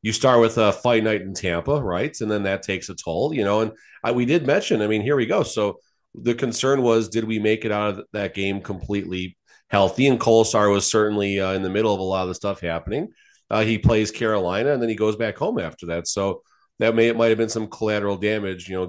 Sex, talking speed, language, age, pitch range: male, 250 wpm, English, 30-49, 95-115 Hz